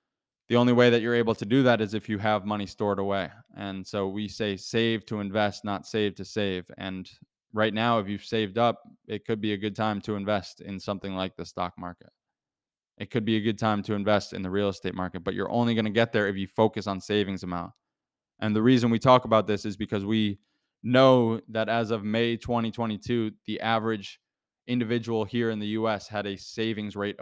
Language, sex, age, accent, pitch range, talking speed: English, male, 20-39, American, 100-115 Hz, 225 wpm